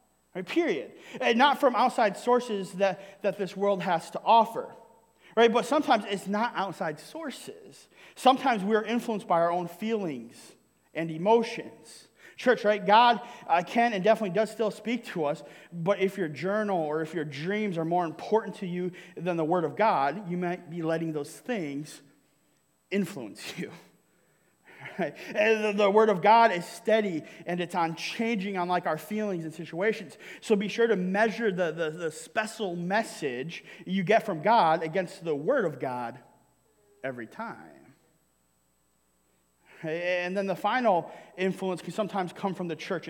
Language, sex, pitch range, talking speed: English, male, 165-220 Hz, 165 wpm